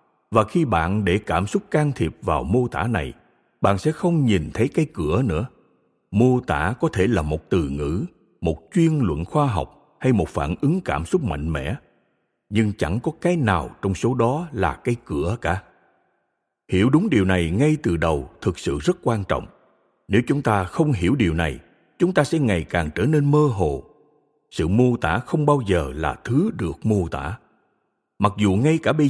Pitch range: 90-150 Hz